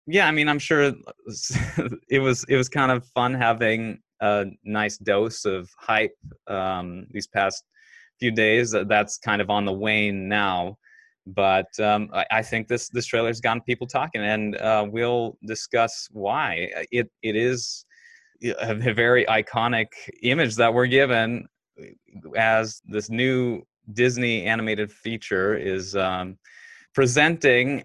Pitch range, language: 100-125 Hz, English